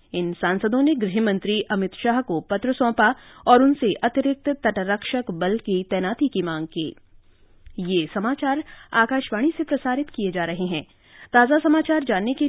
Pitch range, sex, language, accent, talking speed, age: 185-270 Hz, female, Hindi, native, 155 wpm, 30-49